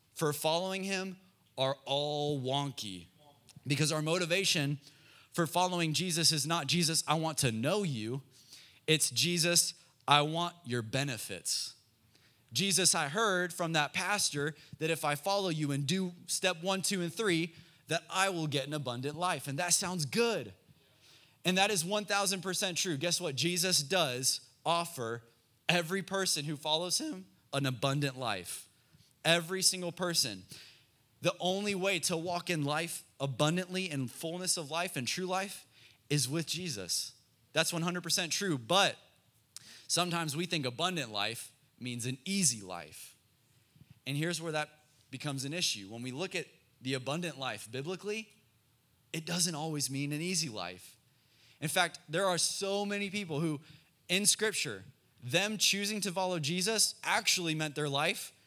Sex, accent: male, American